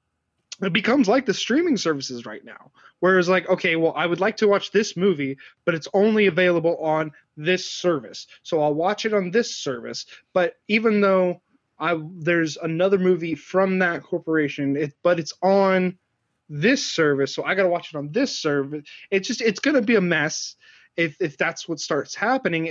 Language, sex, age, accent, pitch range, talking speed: English, male, 20-39, American, 160-205 Hz, 190 wpm